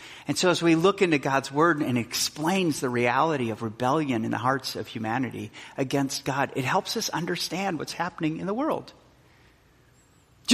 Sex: male